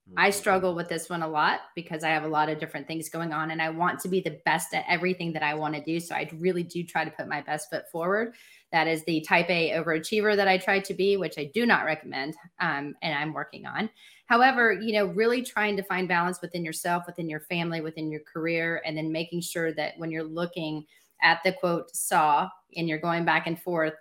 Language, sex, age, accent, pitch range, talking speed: English, female, 30-49, American, 160-185 Hz, 240 wpm